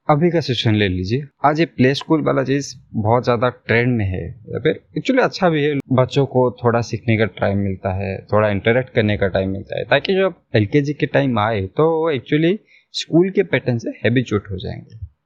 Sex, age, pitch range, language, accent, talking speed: male, 20-39, 105-140 Hz, Hindi, native, 205 wpm